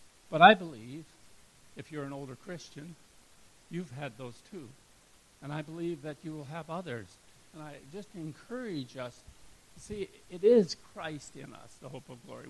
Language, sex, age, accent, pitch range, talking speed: English, male, 60-79, American, 130-170 Hz, 170 wpm